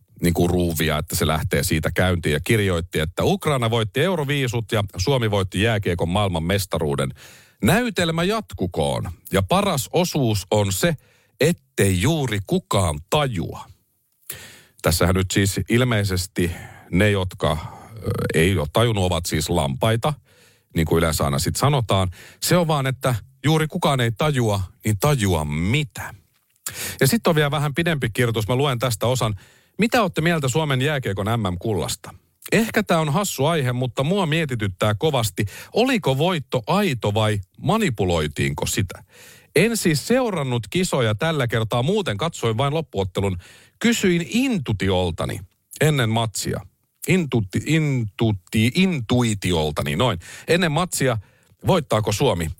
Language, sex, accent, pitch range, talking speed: Finnish, male, native, 100-160 Hz, 130 wpm